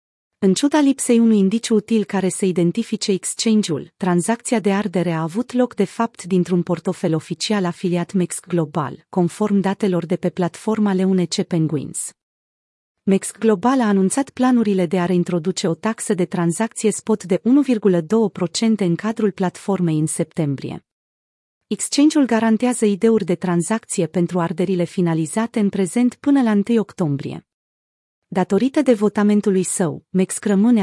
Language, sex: Romanian, female